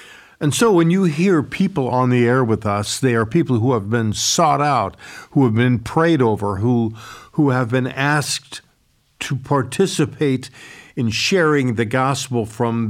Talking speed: 170 wpm